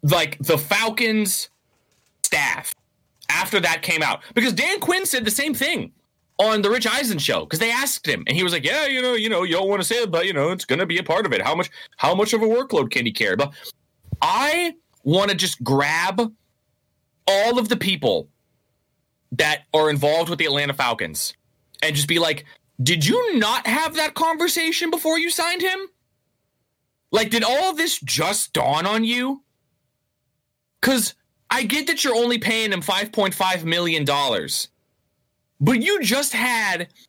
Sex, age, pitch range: male, 30-49, 155-250 Hz